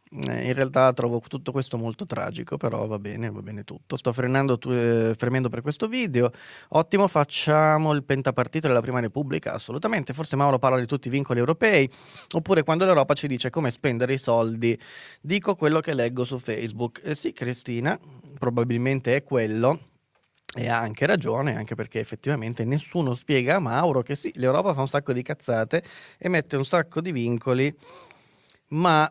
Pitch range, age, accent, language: 120-150 Hz, 30-49, native, Italian